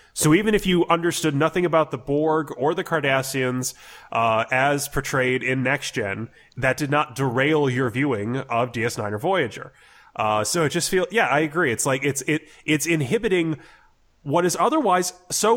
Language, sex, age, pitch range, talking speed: English, male, 20-39, 130-170 Hz, 175 wpm